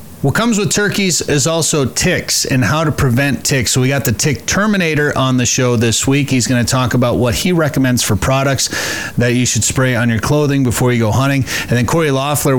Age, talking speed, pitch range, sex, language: 30-49, 230 wpm, 115-140 Hz, male, English